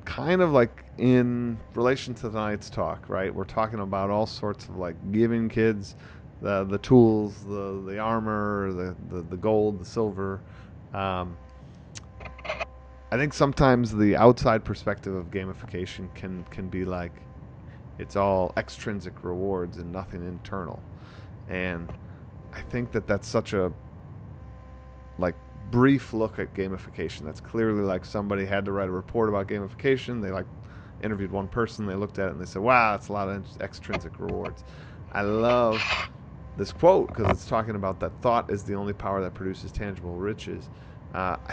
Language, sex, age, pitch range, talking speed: English, male, 30-49, 95-115 Hz, 160 wpm